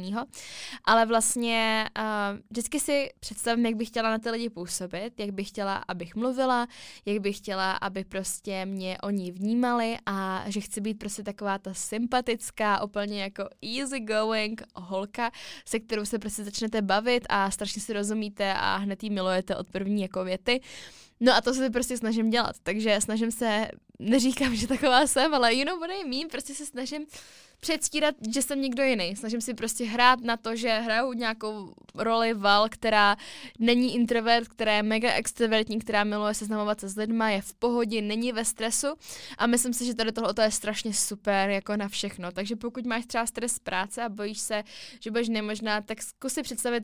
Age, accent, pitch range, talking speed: 10-29, native, 205-240 Hz, 185 wpm